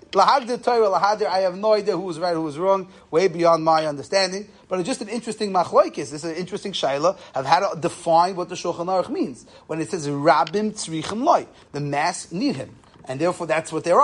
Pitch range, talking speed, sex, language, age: 160-210 Hz, 210 wpm, male, English, 30-49